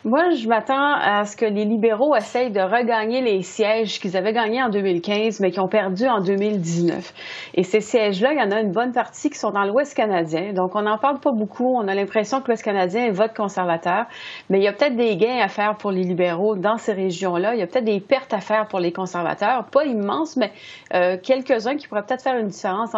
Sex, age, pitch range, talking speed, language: female, 30-49, 185-235 Hz, 240 wpm, French